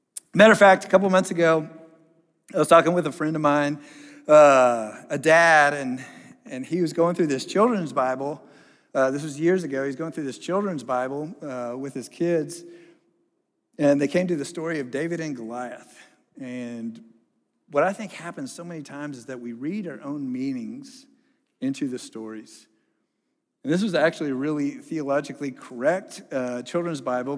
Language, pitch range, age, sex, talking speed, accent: English, 150-200 Hz, 50-69, male, 180 wpm, American